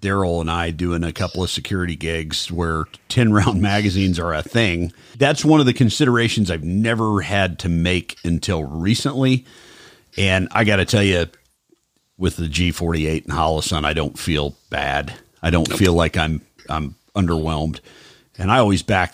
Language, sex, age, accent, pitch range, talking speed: English, male, 50-69, American, 85-105 Hz, 165 wpm